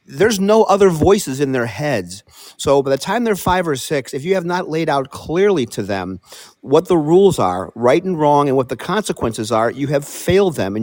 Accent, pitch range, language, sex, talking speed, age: American, 125-170 Hz, English, male, 225 wpm, 50-69